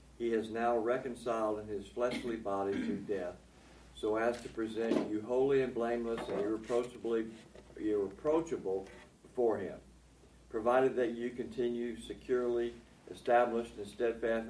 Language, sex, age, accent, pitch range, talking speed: English, male, 60-79, American, 100-120 Hz, 125 wpm